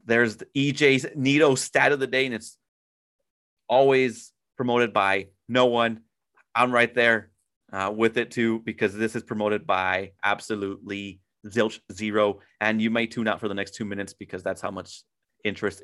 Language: English